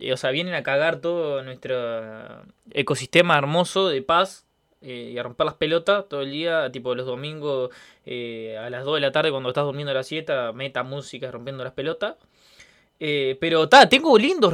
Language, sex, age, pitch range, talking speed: Spanish, male, 20-39, 130-165 Hz, 185 wpm